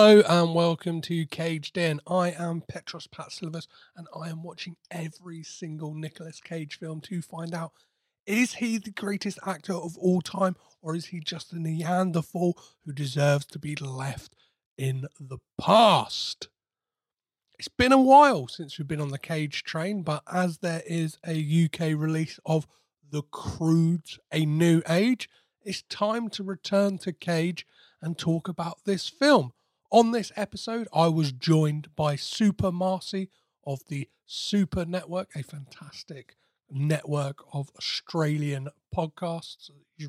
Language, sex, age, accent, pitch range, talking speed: English, male, 30-49, British, 150-190 Hz, 150 wpm